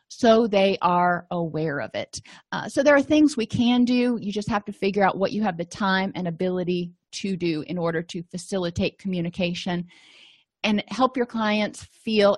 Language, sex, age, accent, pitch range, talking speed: English, female, 30-49, American, 180-225 Hz, 190 wpm